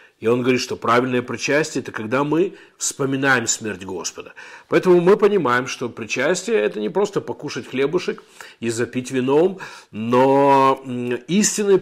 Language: Russian